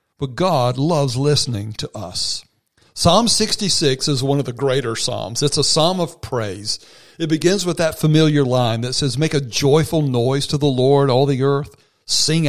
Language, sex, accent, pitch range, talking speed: English, male, American, 115-145 Hz, 185 wpm